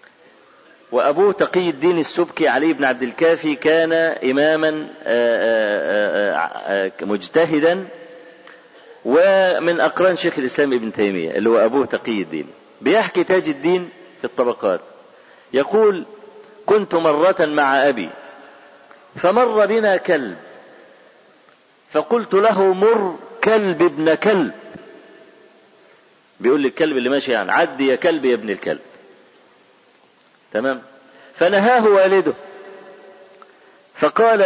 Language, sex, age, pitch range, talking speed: Arabic, male, 50-69, 145-210 Hz, 100 wpm